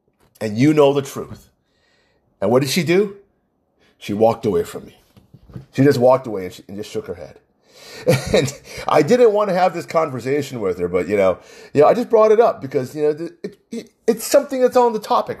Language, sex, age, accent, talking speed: English, male, 30-49, American, 225 wpm